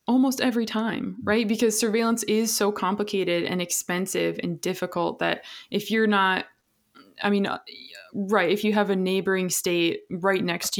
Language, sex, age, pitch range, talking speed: English, female, 20-39, 175-220 Hz, 160 wpm